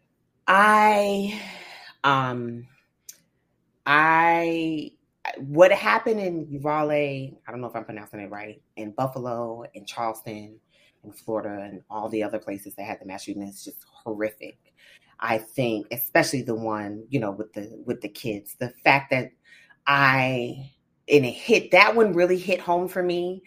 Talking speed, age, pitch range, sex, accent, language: 150 wpm, 30-49, 110-155 Hz, female, American, English